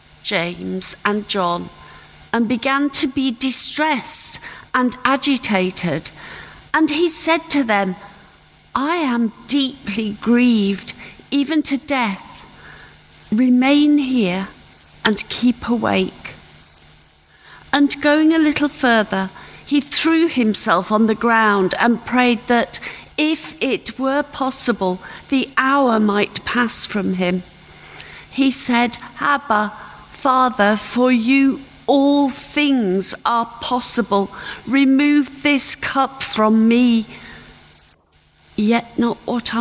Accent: British